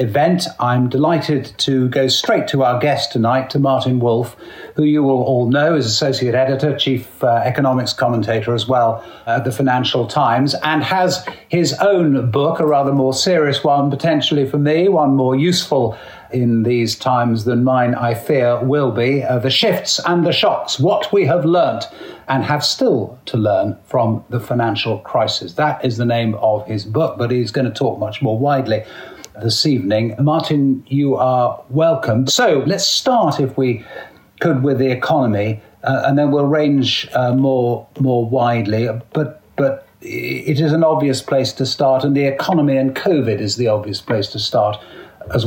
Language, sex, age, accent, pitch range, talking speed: English, male, 50-69, British, 120-145 Hz, 175 wpm